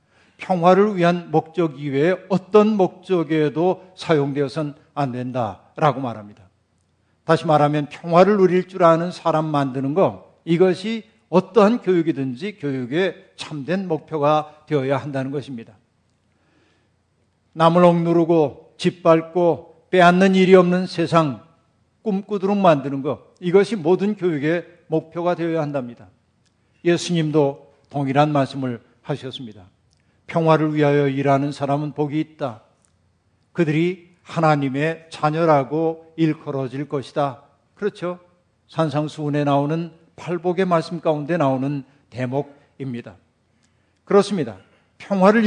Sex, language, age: male, Korean, 50-69